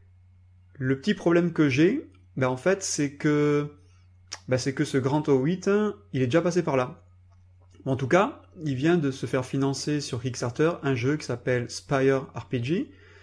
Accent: French